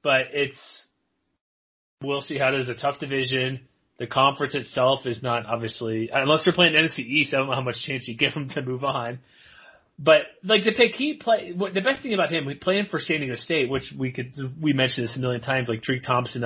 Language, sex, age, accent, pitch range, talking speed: English, male, 30-49, American, 125-155 Hz, 235 wpm